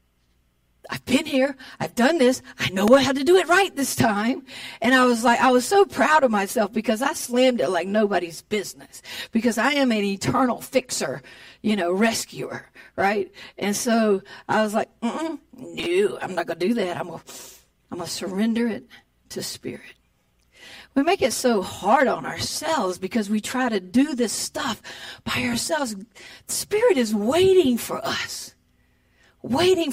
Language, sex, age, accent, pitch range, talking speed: English, female, 50-69, American, 185-265 Hz, 170 wpm